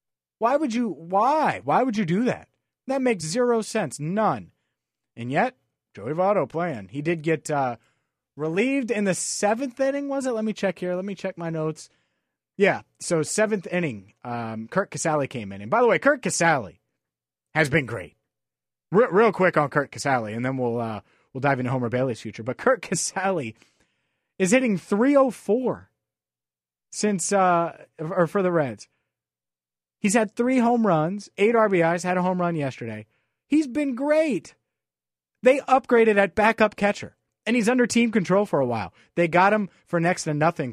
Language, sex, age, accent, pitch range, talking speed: English, male, 30-49, American, 130-215 Hz, 180 wpm